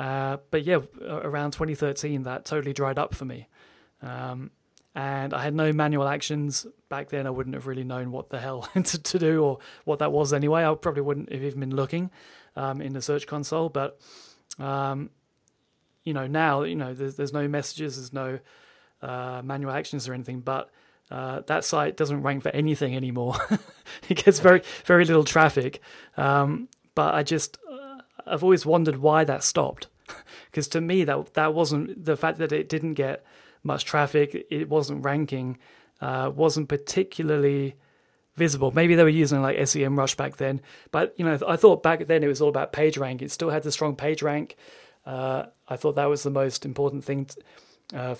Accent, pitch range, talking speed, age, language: British, 135-155 Hz, 190 wpm, 30-49, English